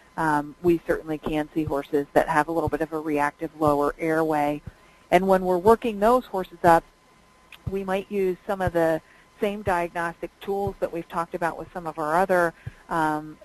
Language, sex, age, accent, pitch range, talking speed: English, female, 40-59, American, 160-190 Hz, 190 wpm